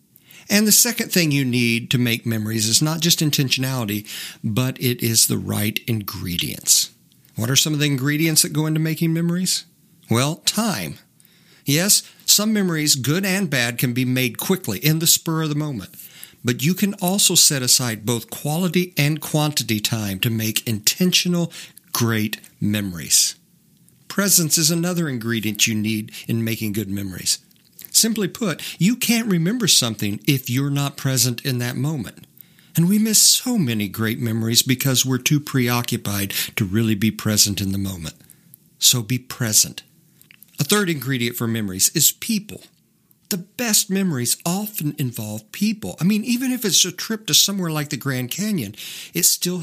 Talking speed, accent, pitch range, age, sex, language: 165 wpm, American, 115-180 Hz, 50-69, male, English